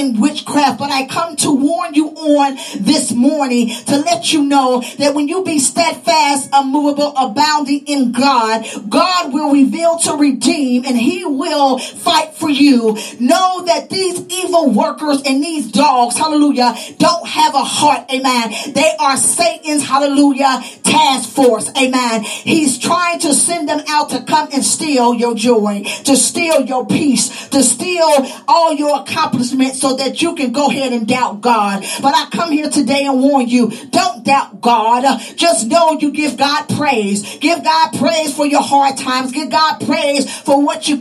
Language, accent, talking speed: English, American, 170 wpm